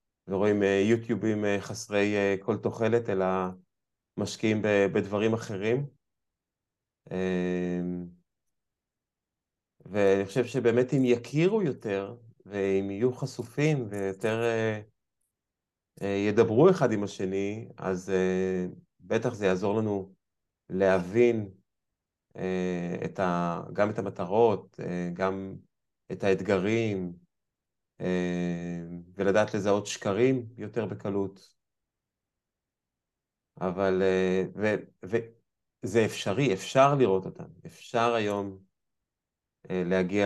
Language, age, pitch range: Hebrew, 30-49, 95-115 Hz